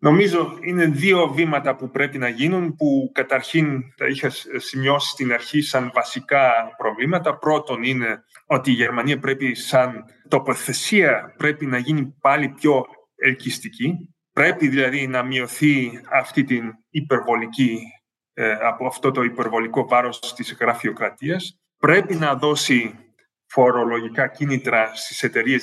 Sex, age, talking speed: male, 30-49, 125 wpm